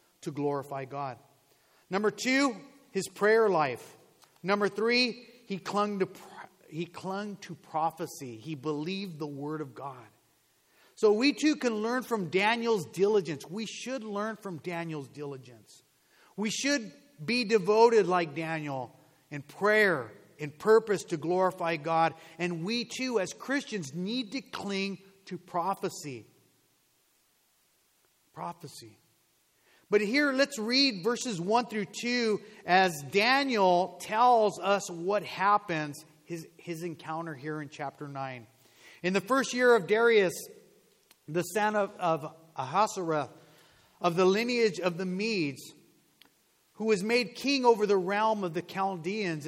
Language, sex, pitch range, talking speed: English, male, 160-215 Hz, 130 wpm